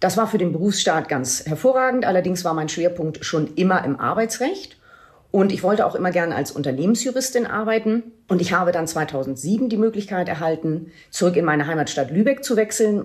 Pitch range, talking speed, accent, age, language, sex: 155-225 Hz, 180 wpm, German, 40-59, German, female